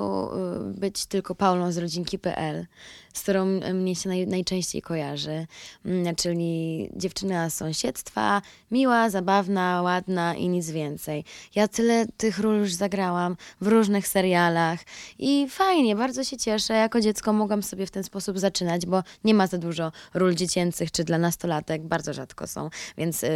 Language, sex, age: Polish, female, 20-39